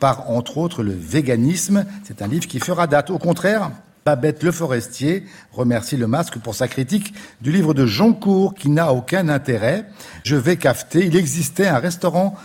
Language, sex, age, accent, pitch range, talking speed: French, male, 50-69, French, 130-180 Hz, 185 wpm